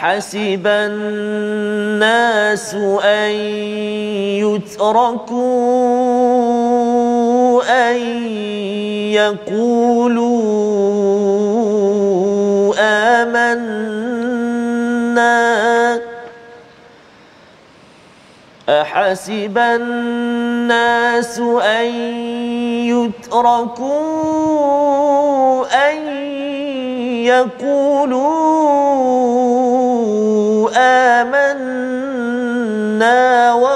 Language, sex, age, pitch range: Malayalam, male, 40-59, 210-250 Hz